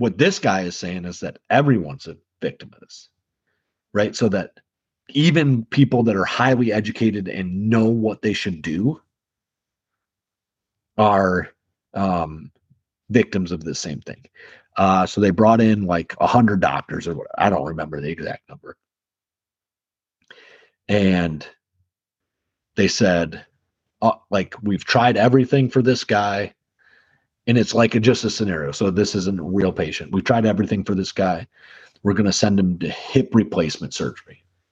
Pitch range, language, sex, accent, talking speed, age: 90-110 Hz, English, male, American, 150 wpm, 30-49